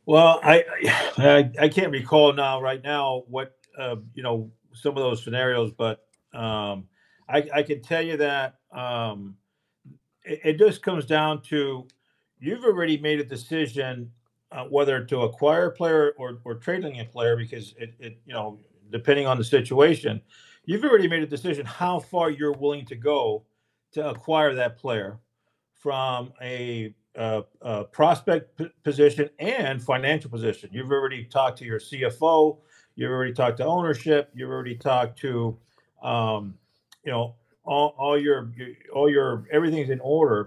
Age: 50-69